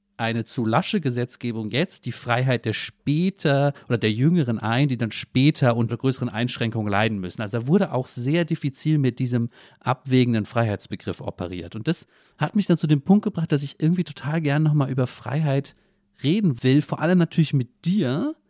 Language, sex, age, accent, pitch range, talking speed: German, male, 40-59, German, 115-150 Hz, 180 wpm